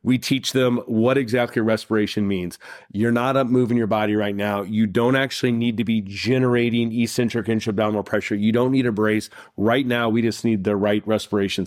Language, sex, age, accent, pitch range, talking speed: English, male, 30-49, American, 105-120 Hz, 195 wpm